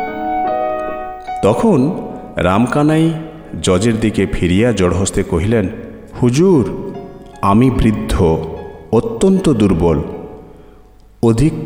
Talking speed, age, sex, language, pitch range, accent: 65 wpm, 50-69, male, Bengali, 90-130 Hz, native